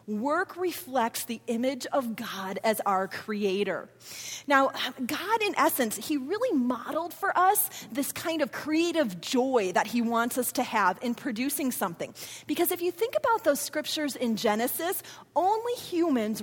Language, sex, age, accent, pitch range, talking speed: English, female, 30-49, American, 220-300 Hz, 155 wpm